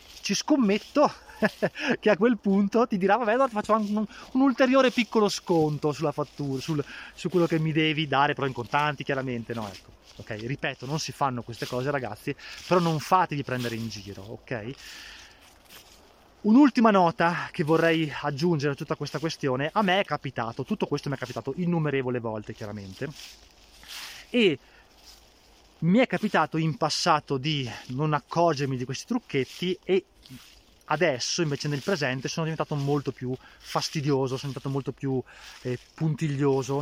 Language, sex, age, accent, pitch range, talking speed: Italian, male, 20-39, native, 130-175 Hz, 155 wpm